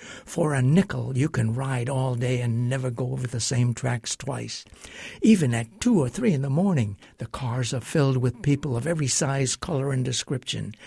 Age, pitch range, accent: 60-79, 120-145 Hz, American